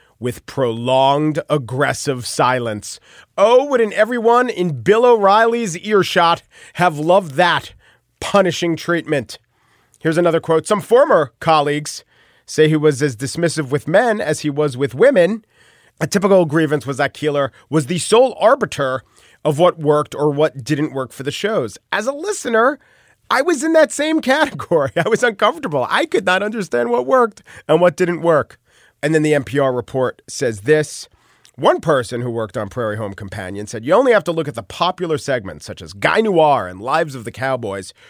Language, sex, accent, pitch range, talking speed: English, male, American, 125-175 Hz, 175 wpm